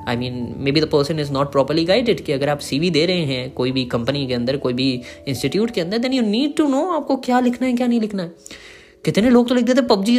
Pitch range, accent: 135-195 Hz, native